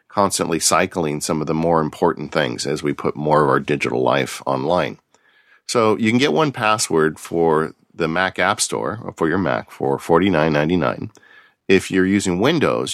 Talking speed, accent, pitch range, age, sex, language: 165 wpm, American, 80-95 Hz, 40-59, male, English